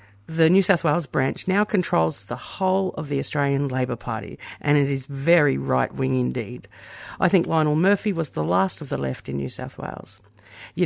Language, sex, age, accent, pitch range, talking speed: English, female, 50-69, Australian, 120-180 Hz, 195 wpm